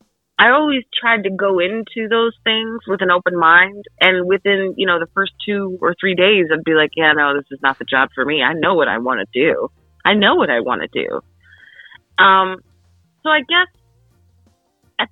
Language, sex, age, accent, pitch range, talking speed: English, female, 30-49, American, 140-175 Hz, 210 wpm